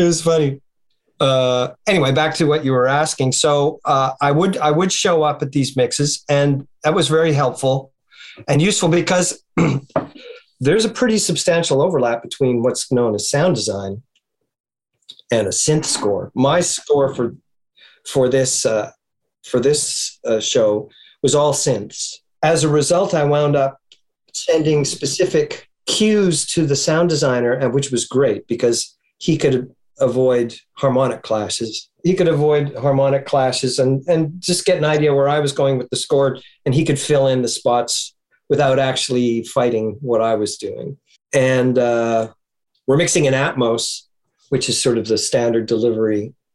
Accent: American